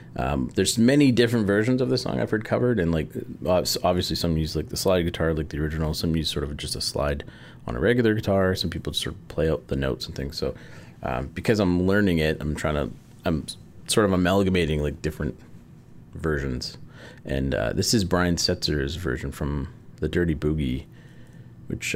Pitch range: 75-105 Hz